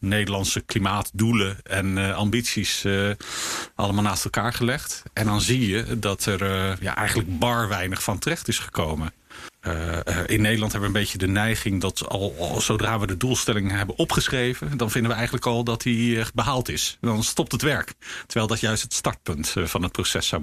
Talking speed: 195 wpm